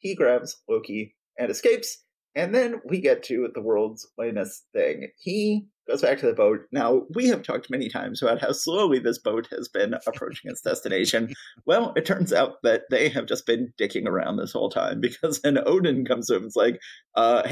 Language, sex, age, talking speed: English, male, 30-49, 205 wpm